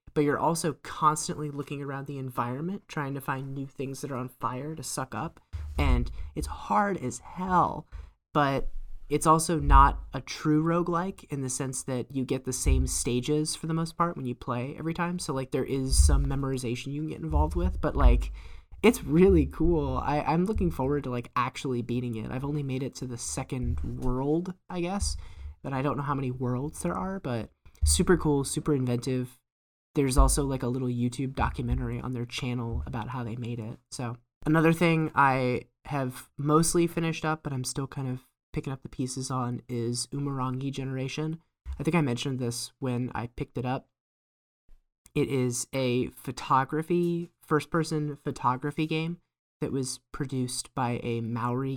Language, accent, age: English, American, 20-39